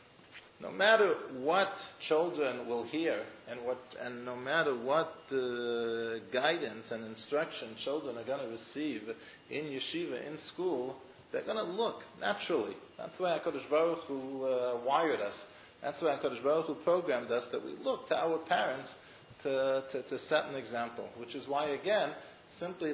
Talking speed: 160 wpm